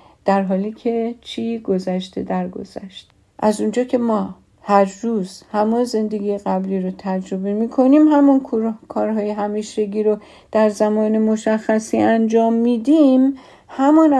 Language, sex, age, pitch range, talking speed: Persian, female, 50-69, 200-255 Hz, 125 wpm